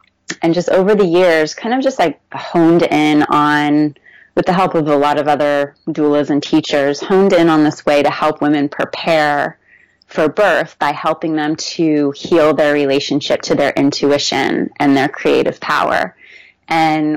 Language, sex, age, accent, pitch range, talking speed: English, female, 30-49, American, 145-170 Hz, 170 wpm